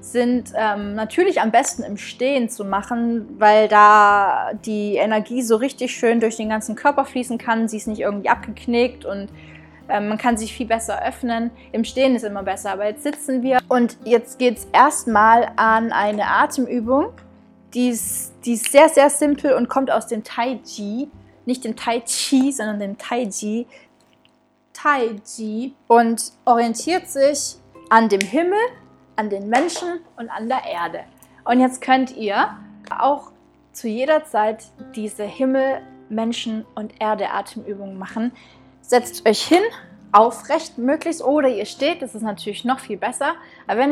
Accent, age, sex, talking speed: German, 20-39, female, 155 wpm